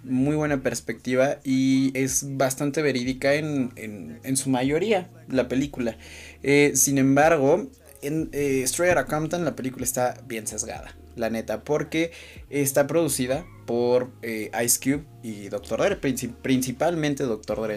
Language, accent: Spanish, Mexican